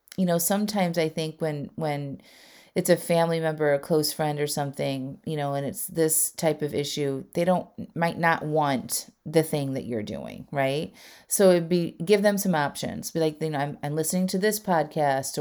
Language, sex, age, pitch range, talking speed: English, female, 30-49, 150-185 Hz, 205 wpm